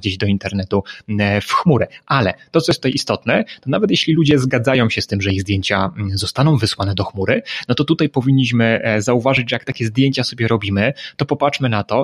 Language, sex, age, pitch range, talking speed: Polish, male, 20-39, 110-135 Hz, 205 wpm